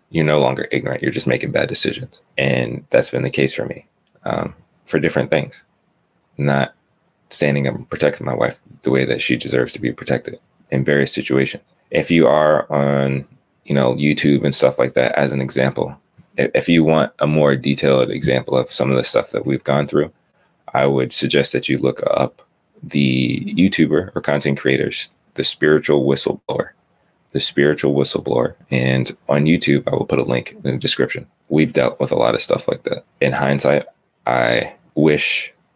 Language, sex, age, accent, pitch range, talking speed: English, male, 30-49, American, 65-70 Hz, 185 wpm